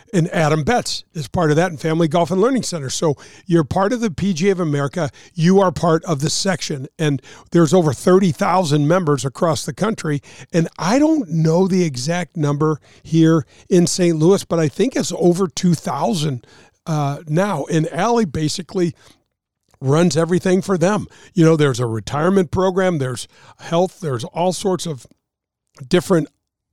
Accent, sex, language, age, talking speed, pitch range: American, male, English, 50-69, 165 wpm, 150-180 Hz